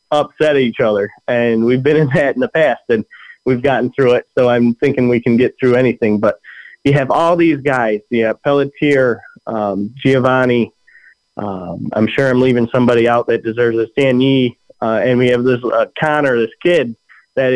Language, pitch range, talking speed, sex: English, 120-145 Hz, 185 wpm, male